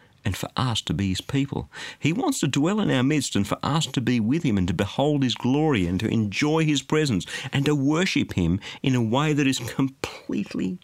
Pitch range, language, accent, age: 100-135 Hz, English, Australian, 50-69